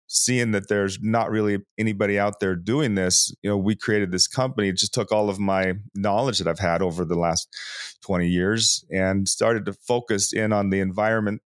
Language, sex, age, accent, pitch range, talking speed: English, male, 30-49, American, 95-115 Hz, 200 wpm